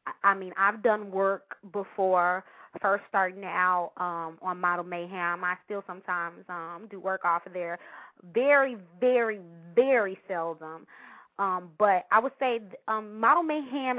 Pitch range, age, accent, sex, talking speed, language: 190-245 Hz, 20-39, American, female, 140 wpm, English